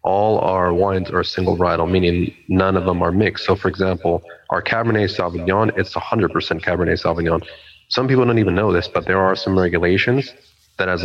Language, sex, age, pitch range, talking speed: English, male, 30-49, 85-95 Hz, 190 wpm